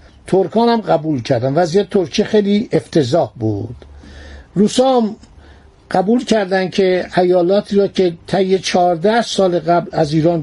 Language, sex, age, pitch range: Persian, male, 60-79, 160-205 Hz